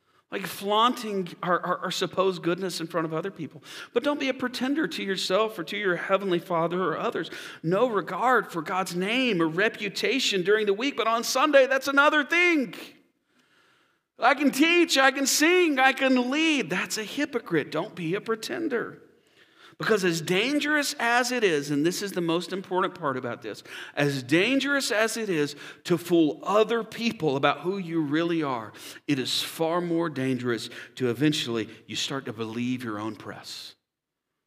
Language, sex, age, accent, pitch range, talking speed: English, male, 40-59, American, 145-230 Hz, 175 wpm